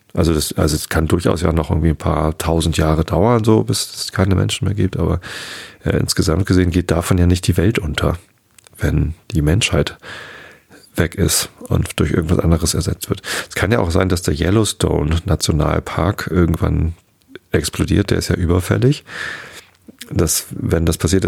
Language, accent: German, German